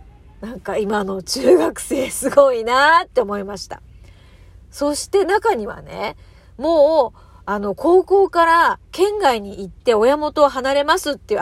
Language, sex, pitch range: Japanese, female, 200-300 Hz